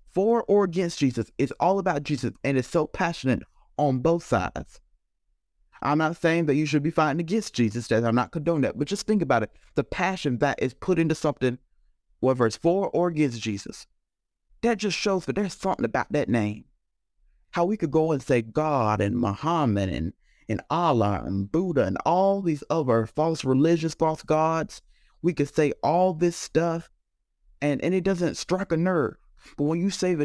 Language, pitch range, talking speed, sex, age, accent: English, 125-185 Hz, 190 wpm, male, 30-49, American